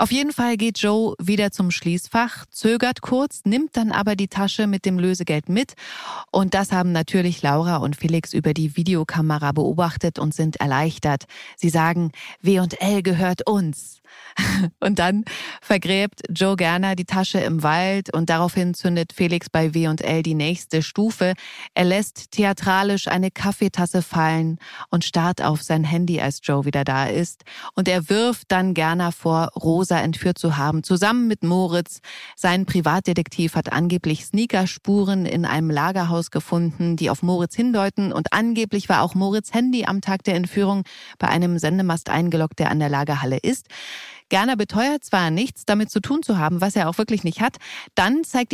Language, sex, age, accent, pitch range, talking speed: German, female, 30-49, German, 160-200 Hz, 165 wpm